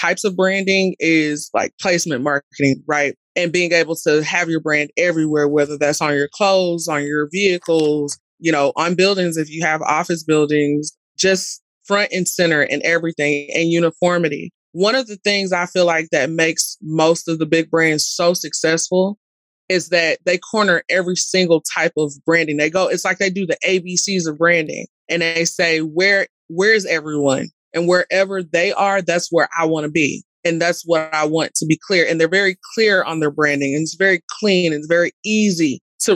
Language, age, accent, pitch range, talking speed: English, 20-39, American, 155-180 Hz, 195 wpm